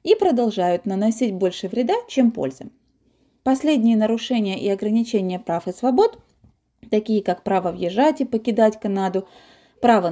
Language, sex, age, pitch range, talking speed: Russian, female, 30-49, 195-260 Hz, 130 wpm